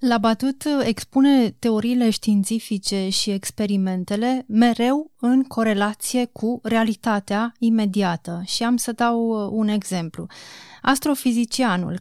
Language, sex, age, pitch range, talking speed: Romanian, female, 30-49, 200-240 Hz, 95 wpm